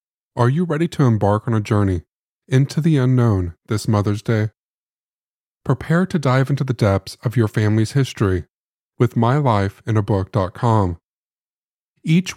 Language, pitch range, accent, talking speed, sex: English, 105-135 Hz, American, 130 wpm, male